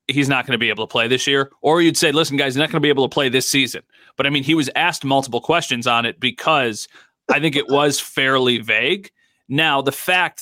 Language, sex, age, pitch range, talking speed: English, male, 30-49, 130-170 Hz, 260 wpm